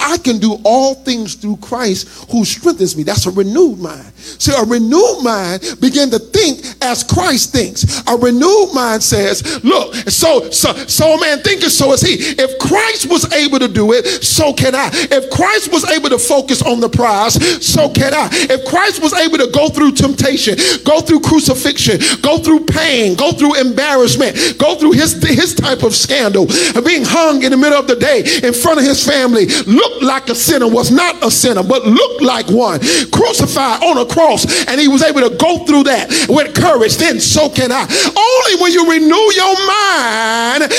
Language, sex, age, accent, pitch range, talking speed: English, male, 40-59, American, 260-350 Hz, 195 wpm